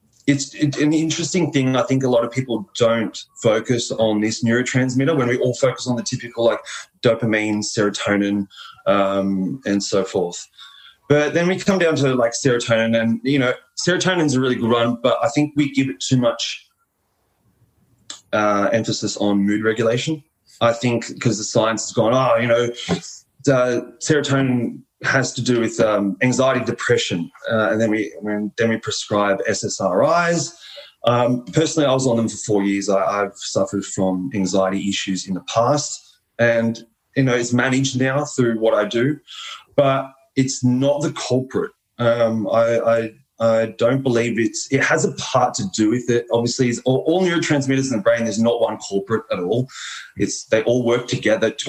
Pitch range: 110-135 Hz